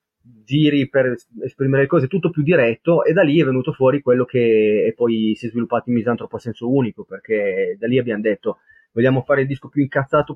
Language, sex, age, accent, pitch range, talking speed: Italian, male, 30-49, native, 115-140 Hz, 210 wpm